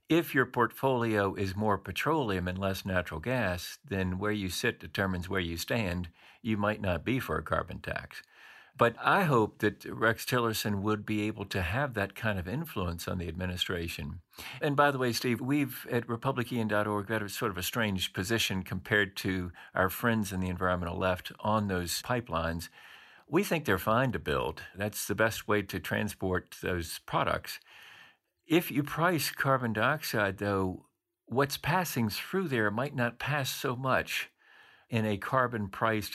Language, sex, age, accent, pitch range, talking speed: English, male, 50-69, American, 95-135 Hz, 170 wpm